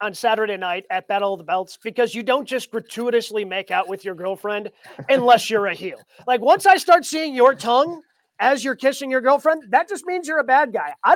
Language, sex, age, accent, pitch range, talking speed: English, male, 30-49, American, 210-260 Hz, 225 wpm